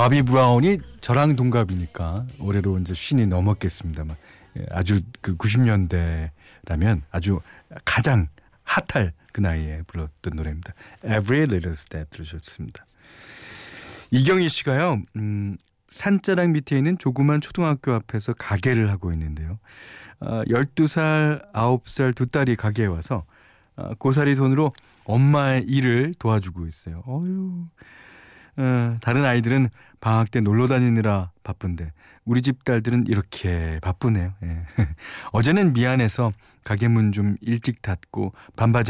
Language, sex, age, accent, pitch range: Korean, male, 40-59, native, 90-130 Hz